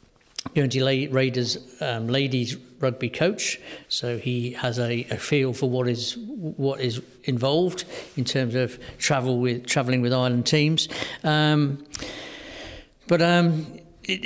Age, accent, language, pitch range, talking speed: 50-69, British, English, 125-140 Hz, 140 wpm